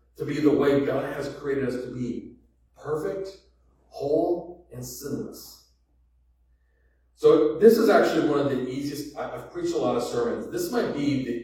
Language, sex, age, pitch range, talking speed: English, male, 40-59, 115-155 Hz, 170 wpm